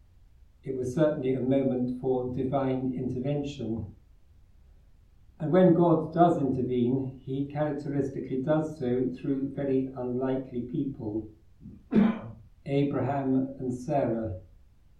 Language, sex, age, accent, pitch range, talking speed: English, male, 50-69, British, 95-140 Hz, 95 wpm